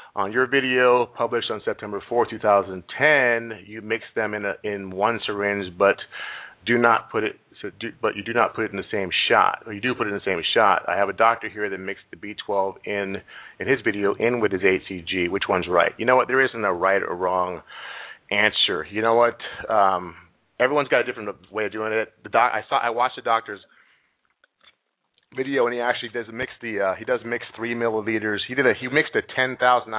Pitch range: 100-120 Hz